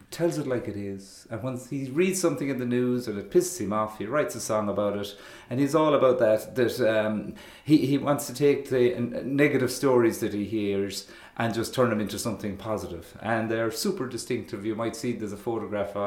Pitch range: 110-140 Hz